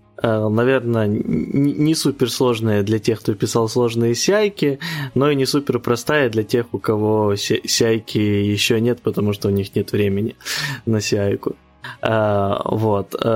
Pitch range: 105-130 Hz